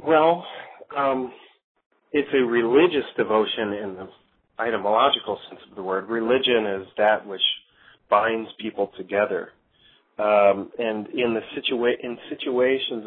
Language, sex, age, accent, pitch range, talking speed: English, male, 30-49, American, 105-130 Hz, 125 wpm